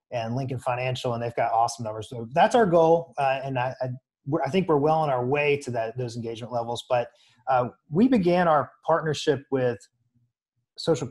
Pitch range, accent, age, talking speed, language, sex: 120-145 Hz, American, 30-49, 200 wpm, English, male